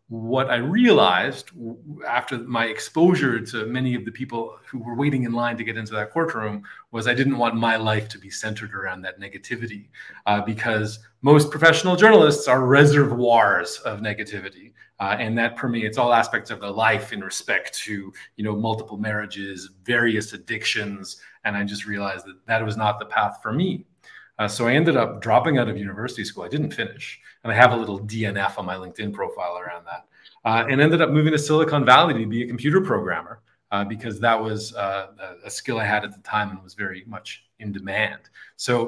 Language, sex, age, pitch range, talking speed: English, male, 30-49, 105-130 Hz, 200 wpm